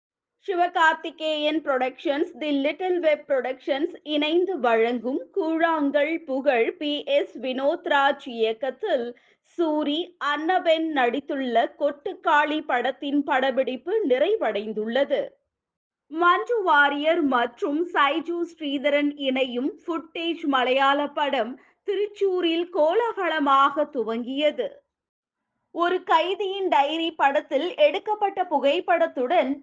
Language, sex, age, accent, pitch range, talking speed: Tamil, female, 20-39, native, 275-355 Hz, 75 wpm